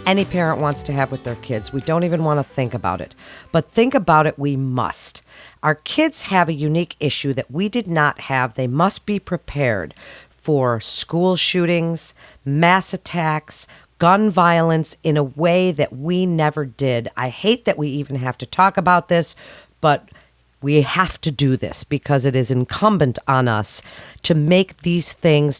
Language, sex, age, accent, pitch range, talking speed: English, female, 40-59, American, 130-175 Hz, 180 wpm